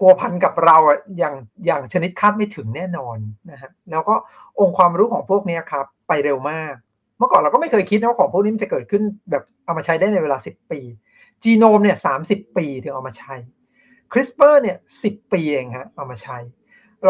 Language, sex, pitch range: Thai, male, 160-220 Hz